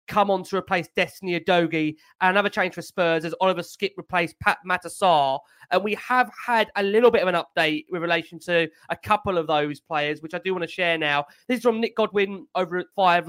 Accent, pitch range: British, 170-205 Hz